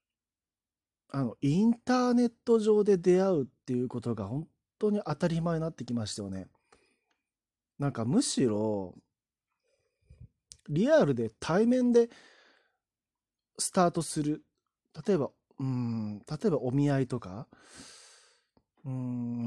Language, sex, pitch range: Japanese, male, 120-195 Hz